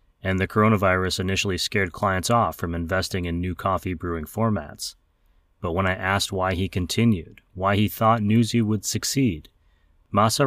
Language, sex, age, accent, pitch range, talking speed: English, male, 30-49, American, 85-105 Hz, 155 wpm